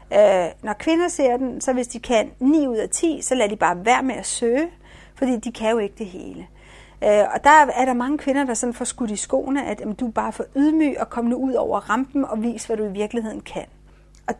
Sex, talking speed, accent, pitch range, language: female, 255 wpm, native, 220-265 Hz, Danish